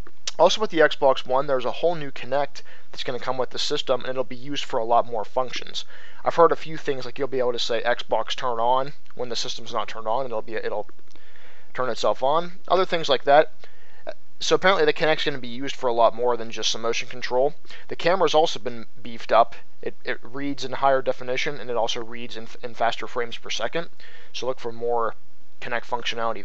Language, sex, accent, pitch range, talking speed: English, male, American, 120-155 Hz, 235 wpm